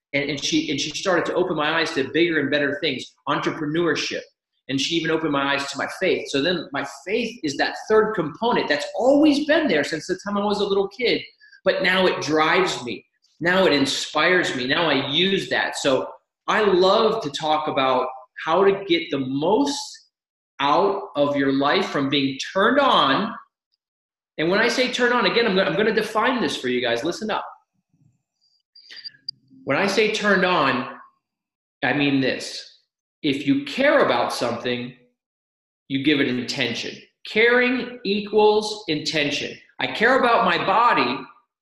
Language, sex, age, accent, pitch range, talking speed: English, male, 30-49, American, 145-220 Hz, 170 wpm